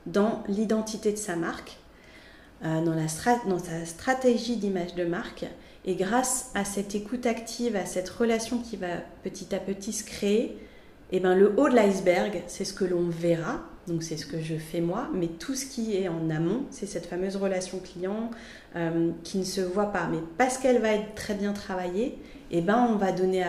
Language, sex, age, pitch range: French, female, 30-49, 185-230 Hz